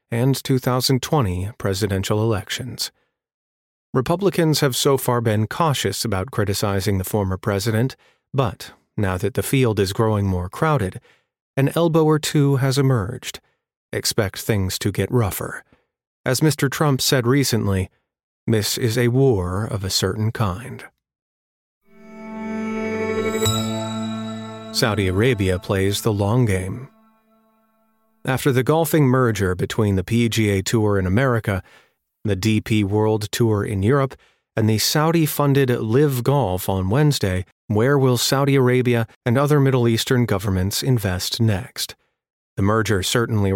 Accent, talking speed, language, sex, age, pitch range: American, 125 wpm, English, male, 40-59, 100-135 Hz